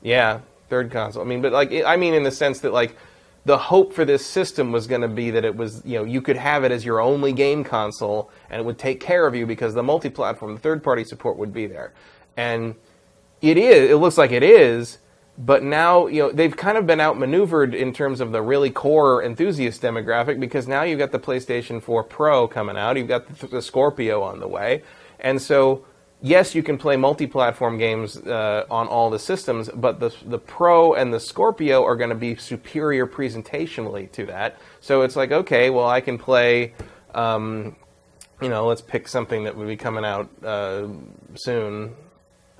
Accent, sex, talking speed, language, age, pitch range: American, male, 205 wpm, English, 30-49, 110-140 Hz